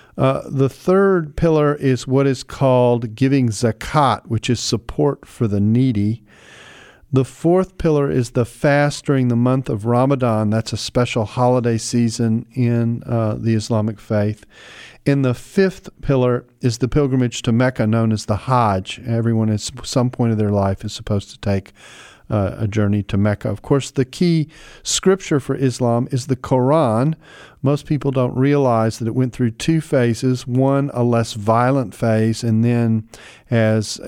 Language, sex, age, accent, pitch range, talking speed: English, male, 40-59, American, 110-130 Hz, 165 wpm